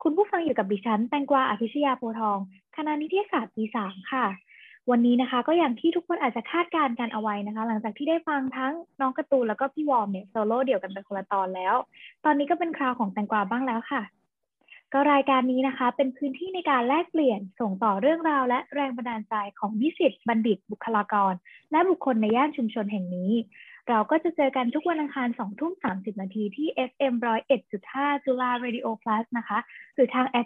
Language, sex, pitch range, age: Thai, female, 220-290 Hz, 20-39